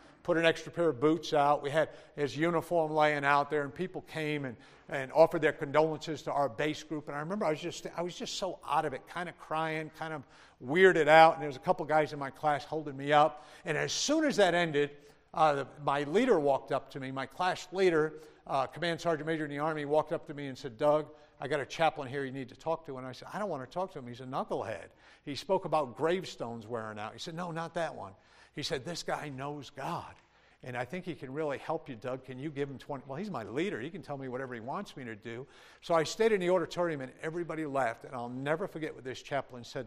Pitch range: 135-160 Hz